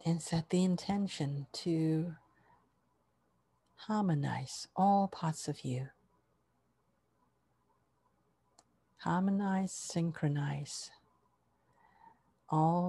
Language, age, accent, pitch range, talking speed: English, 50-69, American, 145-175 Hz, 60 wpm